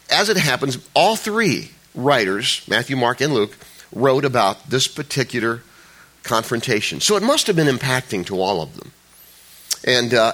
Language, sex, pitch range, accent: English, male, 125-160 Hz, American